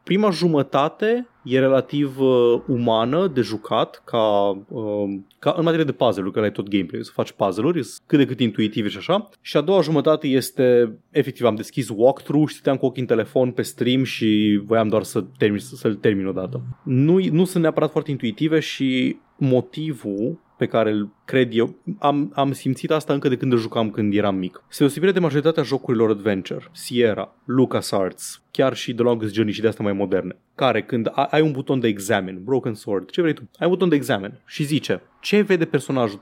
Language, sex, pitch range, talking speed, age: Romanian, male, 115-160 Hz, 190 wpm, 20-39